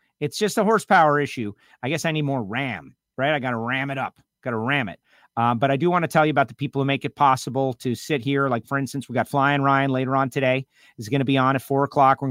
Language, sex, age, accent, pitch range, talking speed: English, male, 40-59, American, 130-165 Hz, 290 wpm